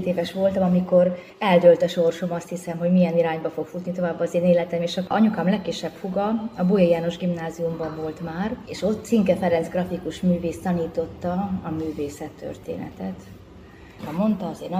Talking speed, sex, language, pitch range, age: 170 wpm, female, Hungarian, 160-180 Hz, 30-49